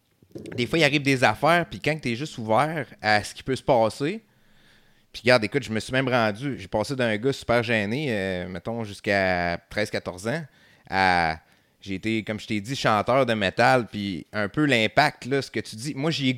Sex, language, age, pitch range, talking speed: male, French, 30-49, 105-135 Hz, 215 wpm